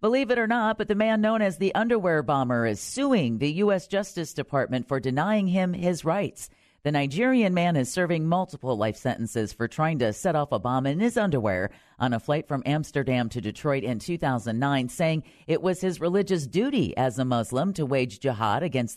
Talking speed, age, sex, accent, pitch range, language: 200 wpm, 40-59, female, American, 115-175 Hz, English